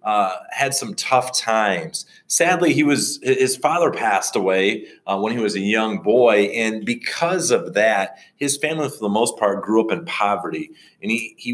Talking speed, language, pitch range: 185 wpm, English, 100-150 Hz